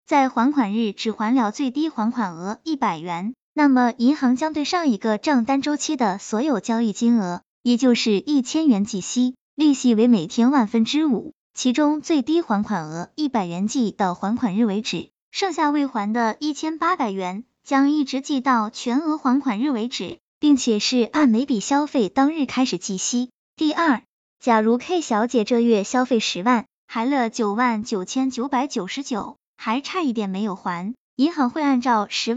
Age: 20-39